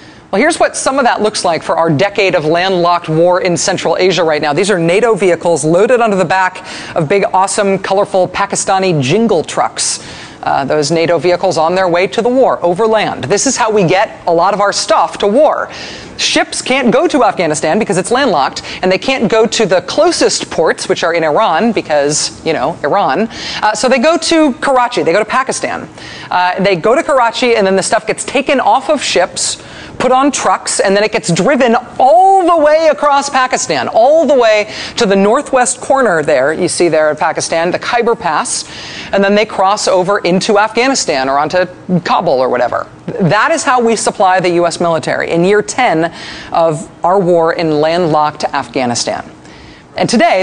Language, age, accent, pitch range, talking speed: English, 40-59, American, 175-235 Hz, 200 wpm